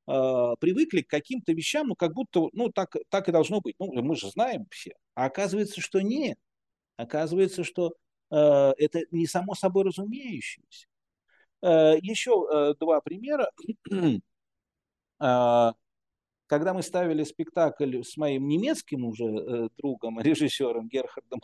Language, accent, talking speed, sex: Russian, native, 135 wpm, male